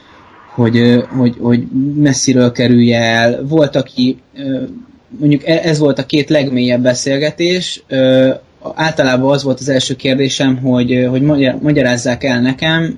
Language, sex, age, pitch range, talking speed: Hungarian, male, 20-39, 125-145 Hz, 125 wpm